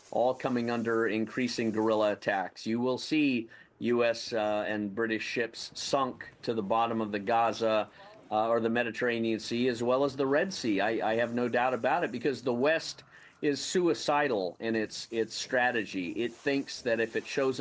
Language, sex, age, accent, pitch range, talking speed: English, male, 40-59, American, 110-135 Hz, 185 wpm